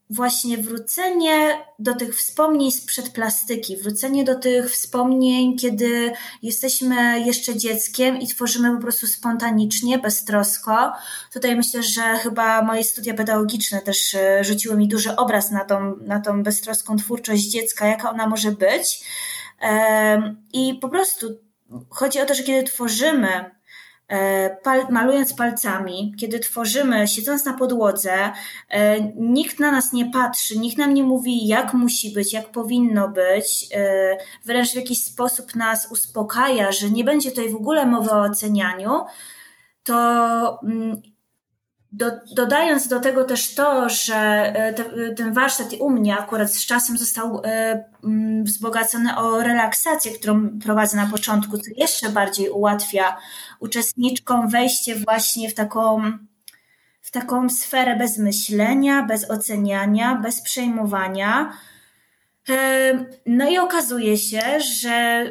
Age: 20-39